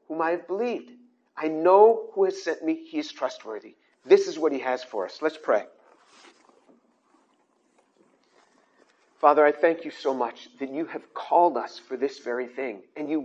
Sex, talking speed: male, 175 wpm